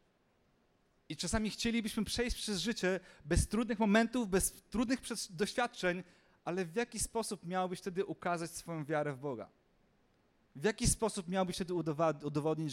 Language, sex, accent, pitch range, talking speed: Polish, male, native, 135-175 Hz, 135 wpm